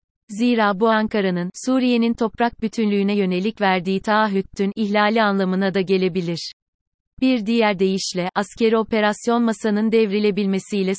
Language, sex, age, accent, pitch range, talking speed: Turkish, female, 30-49, native, 190-220 Hz, 110 wpm